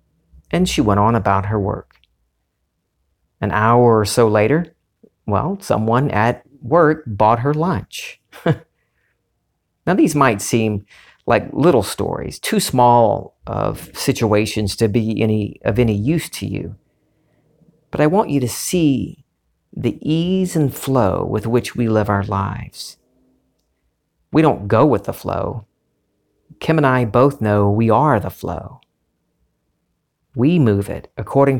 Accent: American